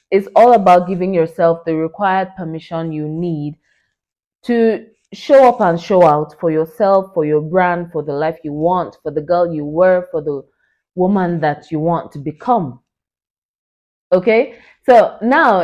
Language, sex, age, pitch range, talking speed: English, female, 20-39, 155-200 Hz, 160 wpm